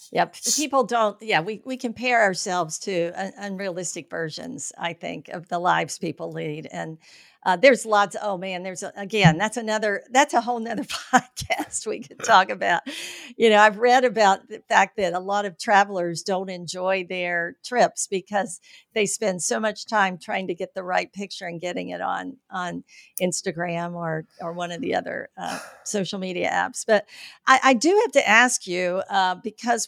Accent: American